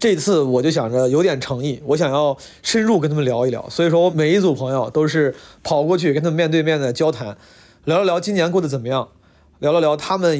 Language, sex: Chinese, male